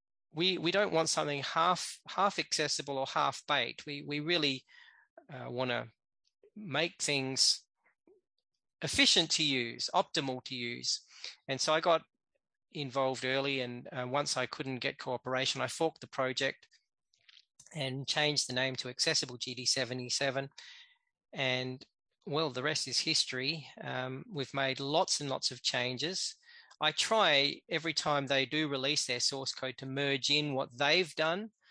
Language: English